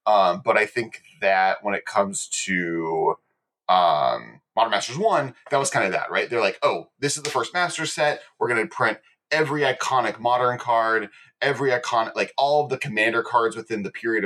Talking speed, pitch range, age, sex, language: 195 wpm, 100-130 Hz, 30-49, male, English